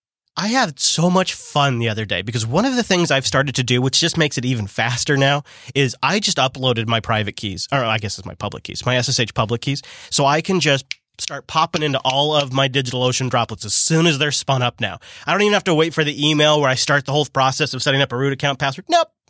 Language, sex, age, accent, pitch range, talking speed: English, male, 30-49, American, 125-170 Hz, 260 wpm